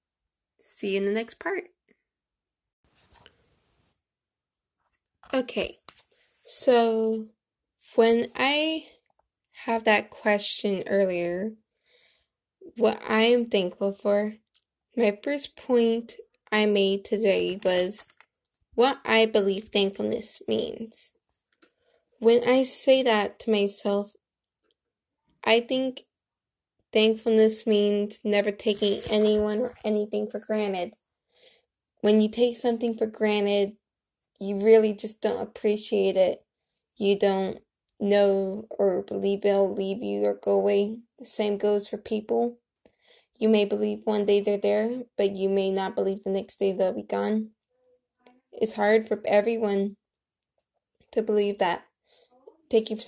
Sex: female